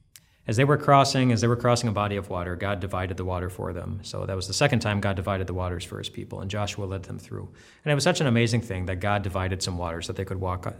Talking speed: 295 wpm